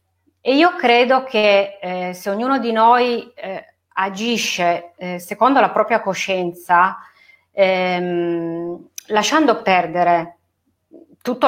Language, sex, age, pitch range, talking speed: Italian, female, 30-49, 180-235 Hz, 105 wpm